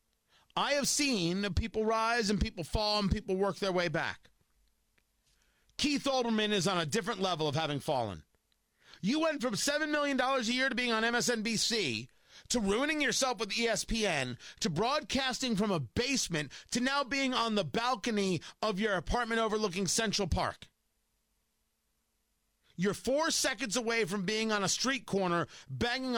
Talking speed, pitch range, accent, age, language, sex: 155 wpm, 155-230 Hz, American, 40-59, English, male